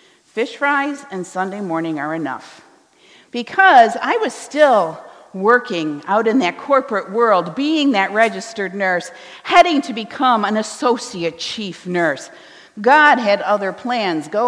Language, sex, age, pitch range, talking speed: English, female, 50-69, 195-280 Hz, 135 wpm